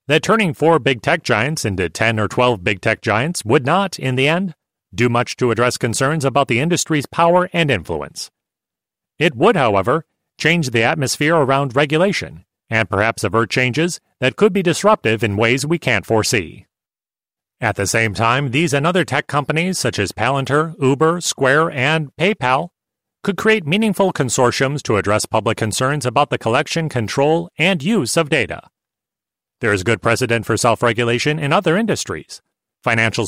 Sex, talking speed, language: male, 165 wpm, English